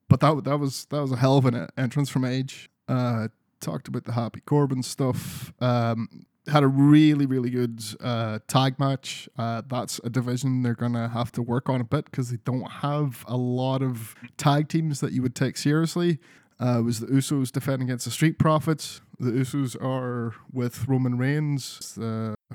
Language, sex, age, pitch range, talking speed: English, male, 20-39, 120-145 Hz, 190 wpm